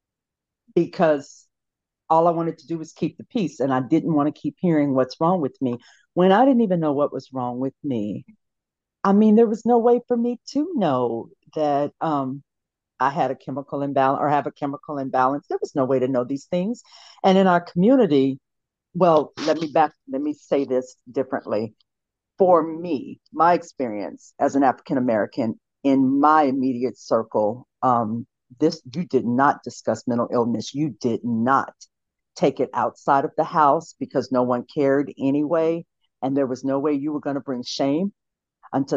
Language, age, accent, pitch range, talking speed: English, 50-69, American, 130-180 Hz, 185 wpm